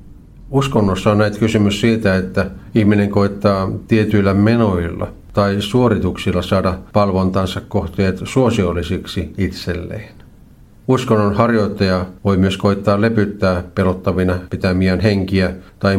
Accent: native